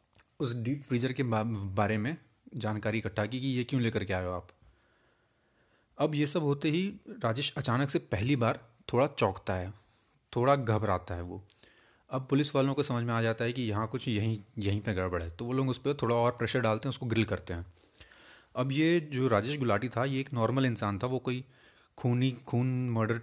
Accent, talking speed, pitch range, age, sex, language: native, 210 wpm, 105-130 Hz, 30-49, male, Hindi